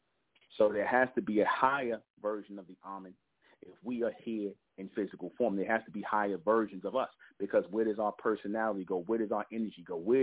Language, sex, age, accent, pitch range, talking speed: English, male, 30-49, American, 95-110 Hz, 225 wpm